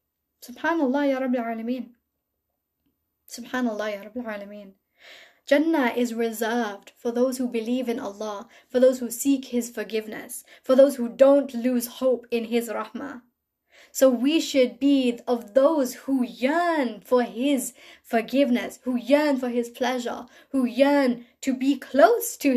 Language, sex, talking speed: English, female, 140 wpm